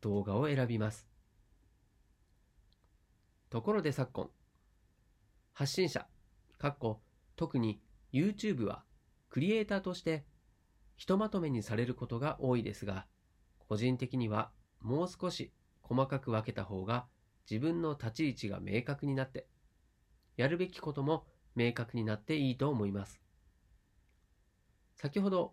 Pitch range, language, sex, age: 100-145 Hz, Japanese, male, 40-59